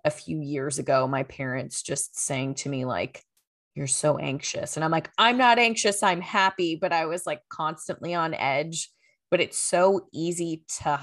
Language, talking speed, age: English, 185 wpm, 20-39